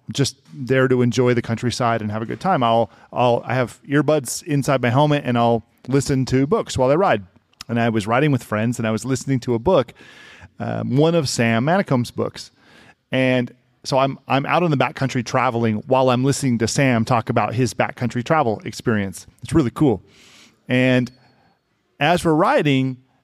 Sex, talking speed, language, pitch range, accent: male, 195 wpm, English, 120-150 Hz, American